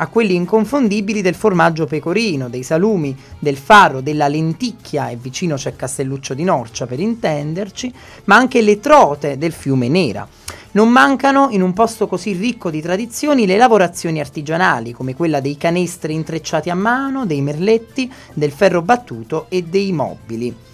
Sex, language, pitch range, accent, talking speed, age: male, Italian, 145-200 Hz, native, 155 wpm, 30-49